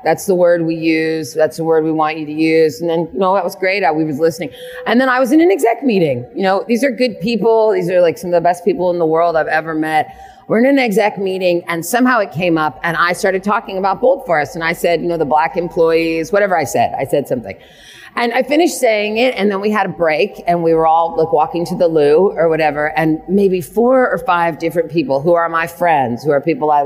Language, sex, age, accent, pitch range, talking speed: English, female, 30-49, American, 165-245 Hz, 265 wpm